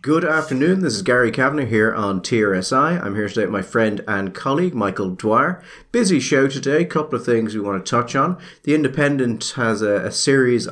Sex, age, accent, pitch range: male, 30-49, British, 105-145 Hz